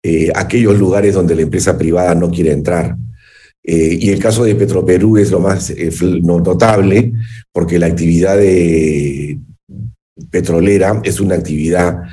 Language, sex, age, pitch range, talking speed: Spanish, male, 50-69, 90-115 Hz, 145 wpm